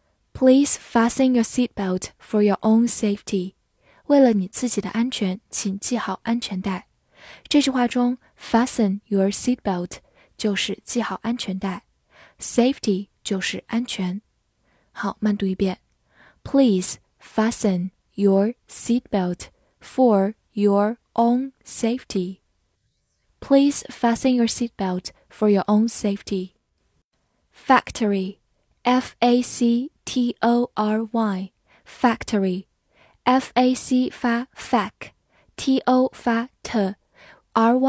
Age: 10-29